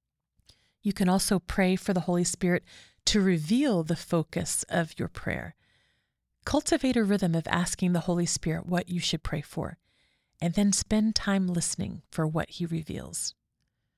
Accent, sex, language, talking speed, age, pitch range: American, female, English, 160 wpm, 40-59, 165-200 Hz